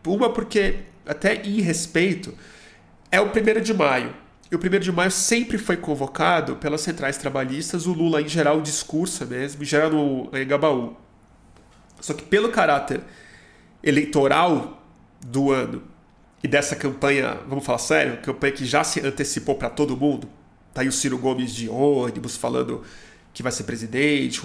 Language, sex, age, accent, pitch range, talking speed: Portuguese, male, 30-49, Brazilian, 130-160 Hz, 160 wpm